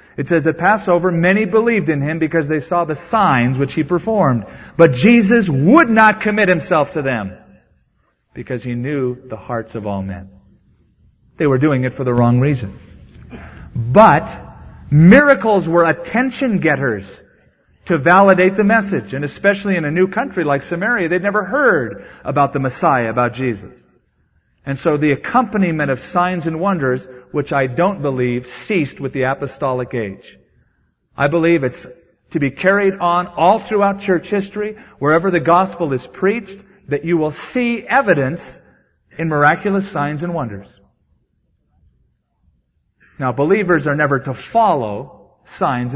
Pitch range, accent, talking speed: 130-190 Hz, American, 150 wpm